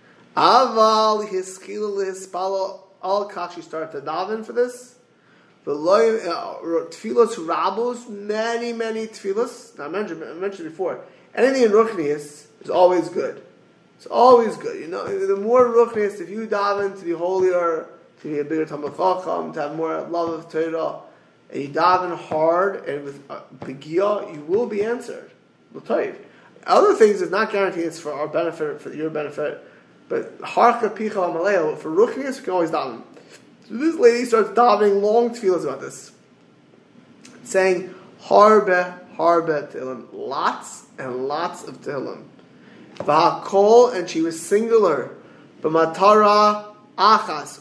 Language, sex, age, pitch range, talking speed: English, male, 20-39, 175-240 Hz, 145 wpm